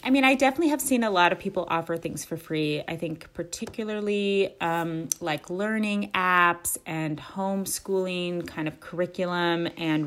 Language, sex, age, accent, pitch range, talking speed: English, female, 30-49, American, 165-195 Hz, 160 wpm